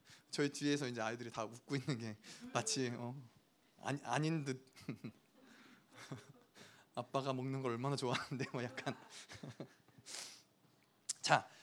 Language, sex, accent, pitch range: Korean, male, native, 140-235 Hz